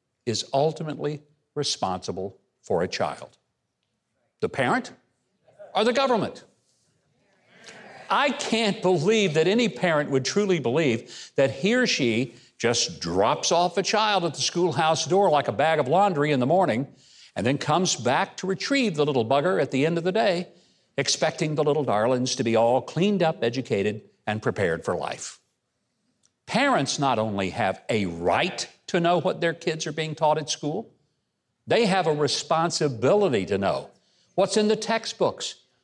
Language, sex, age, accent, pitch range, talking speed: English, male, 60-79, American, 140-195 Hz, 160 wpm